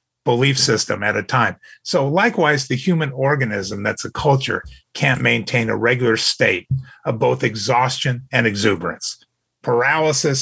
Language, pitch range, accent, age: English, 120-165 Hz, American, 50-69